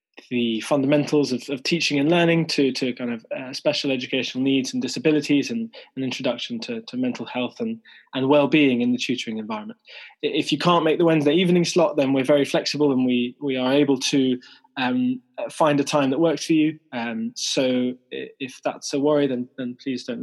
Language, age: English, 20-39